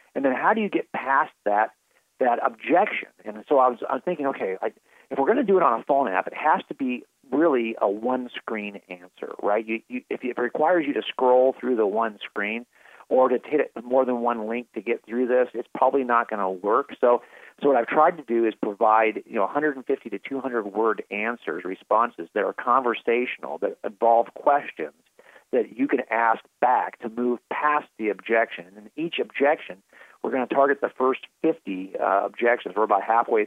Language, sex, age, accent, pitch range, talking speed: English, male, 40-59, American, 115-150 Hz, 205 wpm